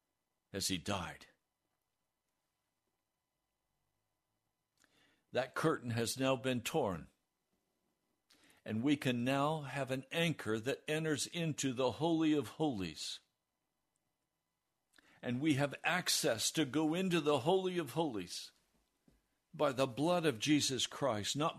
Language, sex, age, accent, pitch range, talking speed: English, male, 60-79, American, 120-160 Hz, 115 wpm